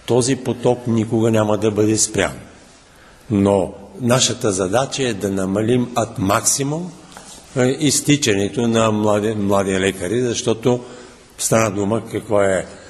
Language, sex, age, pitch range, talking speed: Bulgarian, male, 50-69, 105-135 Hz, 110 wpm